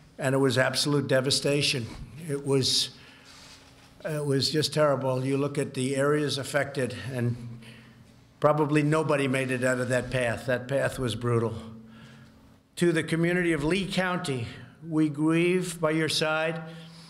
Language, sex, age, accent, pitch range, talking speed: English, male, 60-79, American, 135-150 Hz, 145 wpm